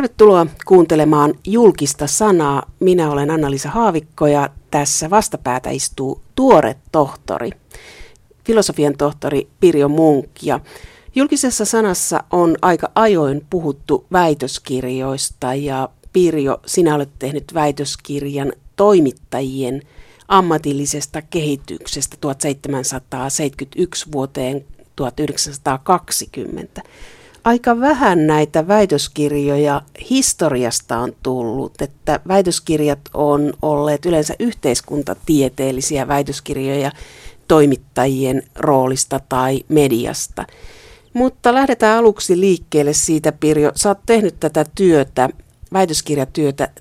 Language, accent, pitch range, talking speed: Finnish, native, 140-175 Hz, 85 wpm